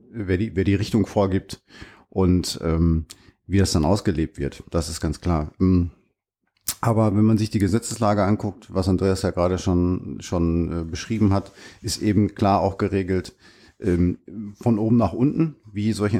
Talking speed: 160 wpm